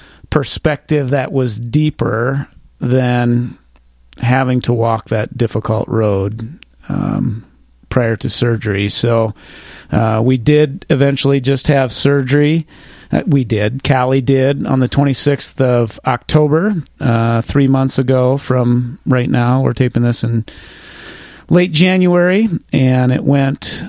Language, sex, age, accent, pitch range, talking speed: English, male, 40-59, American, 120-140 Hz, 125 wpm